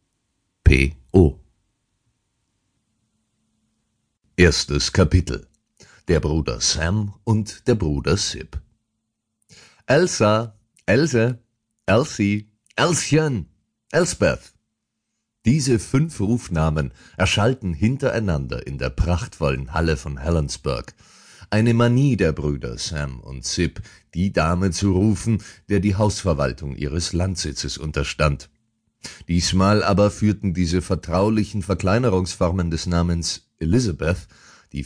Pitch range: 80-110 Hz